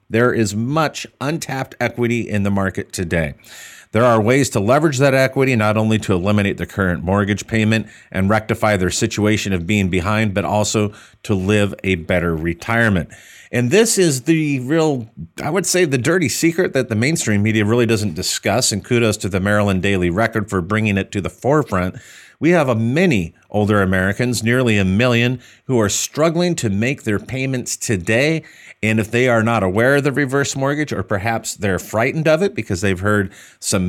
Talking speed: 190 wpm